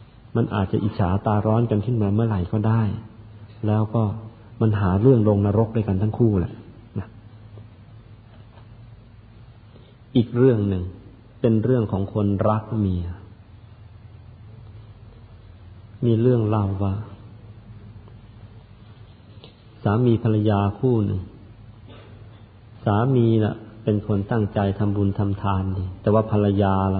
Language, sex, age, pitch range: Thai, male, 50-69, 100-110 Hz